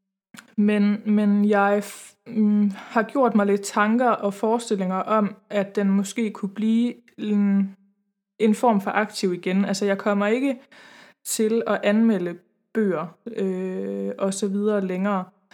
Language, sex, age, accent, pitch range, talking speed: Danish, female, 20-39, native, 195-225 Hz, 145 wpm